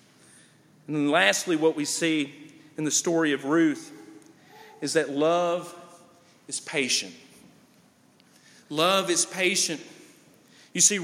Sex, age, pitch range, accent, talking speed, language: male, 40-59, 175-225 Hz, American, 110 wpm, English